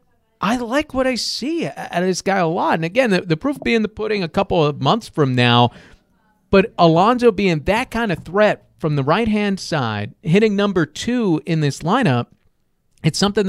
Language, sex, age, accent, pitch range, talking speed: English, male, 40-59, American, 150-195 Hz, 195 wpm